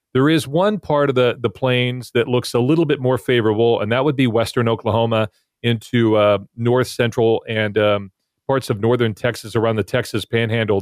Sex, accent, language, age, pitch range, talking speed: male, American, English, 40-59, 115-135 Hz, 195 wpm